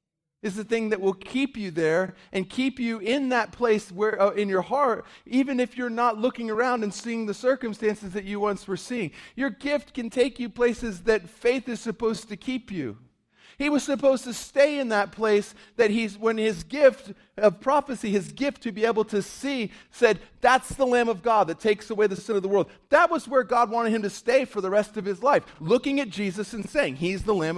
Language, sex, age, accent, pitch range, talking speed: English, male, 40-59, American, 150-235 Hz, 230 wpm